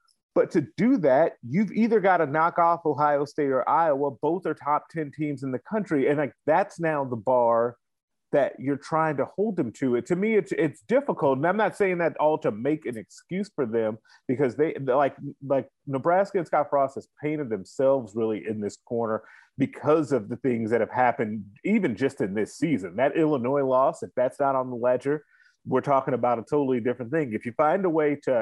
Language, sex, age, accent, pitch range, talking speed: English, male, 30-49, American, 125-170 Hz, 215 wpm